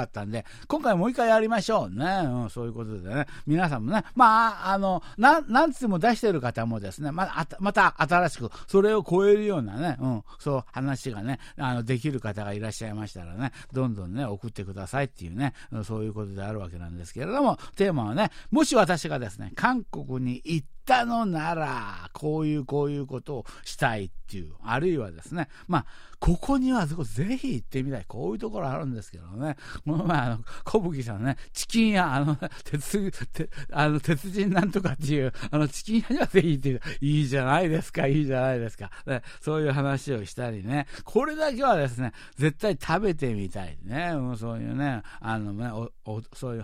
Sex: male